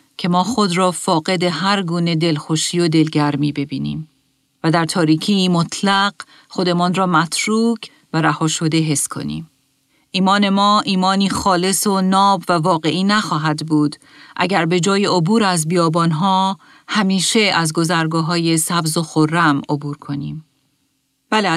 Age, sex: 40-59, female